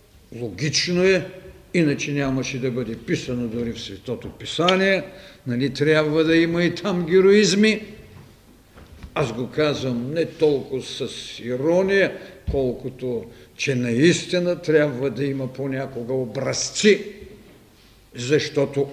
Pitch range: 120-185 Hz